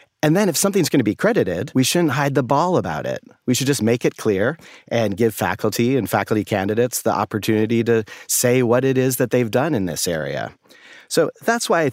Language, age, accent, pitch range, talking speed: English, 40-59, American, 100-135 Hz, 220 wpm